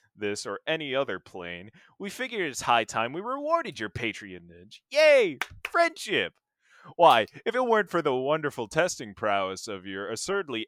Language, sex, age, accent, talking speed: English, male, 20-39, American, 155 wpm